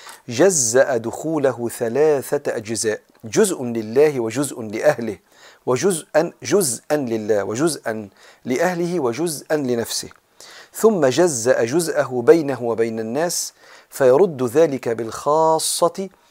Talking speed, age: 90 wpm, 40-59